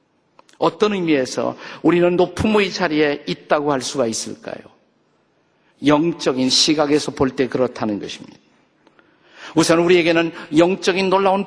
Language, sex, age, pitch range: Korean, male, 50-69, 135-175 Hz